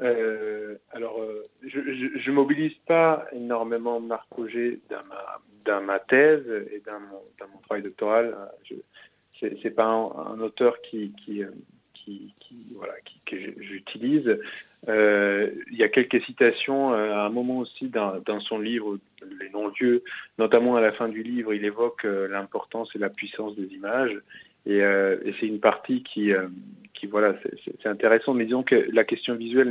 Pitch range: 105-120 Hz